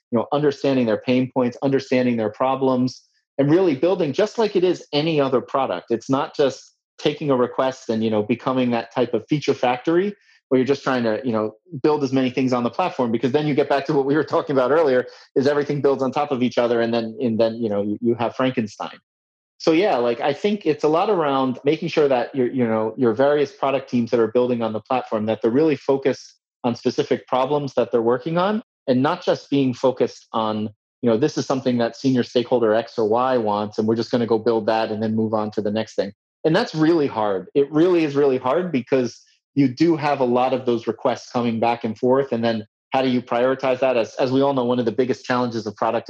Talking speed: 245 wpm